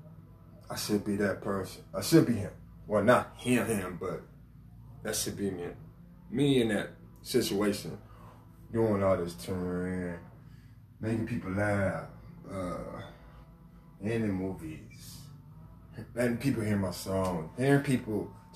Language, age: English, 20-39